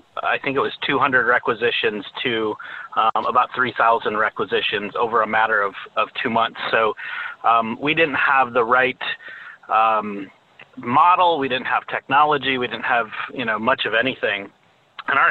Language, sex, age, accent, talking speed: English, male, 30-49, American, 160 wpm